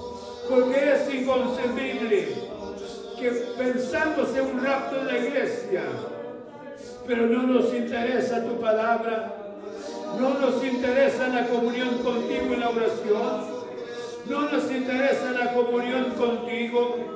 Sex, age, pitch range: male, 60-79, 235-275 Hz